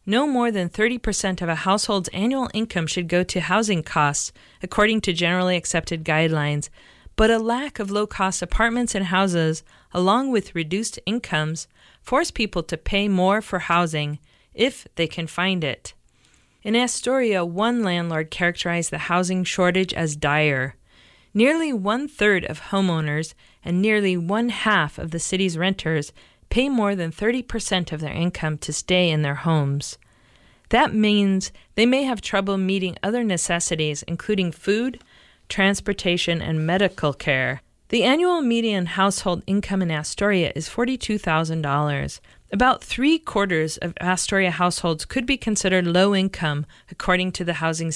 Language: English